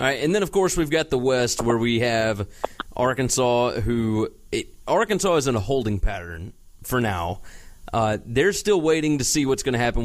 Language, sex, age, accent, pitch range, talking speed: English, male, 30-49, American, 110-135 Hz, 205 wpm